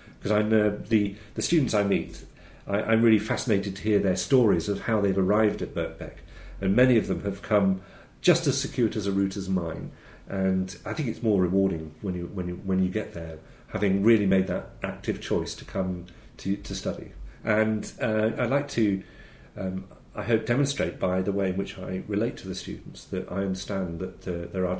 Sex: male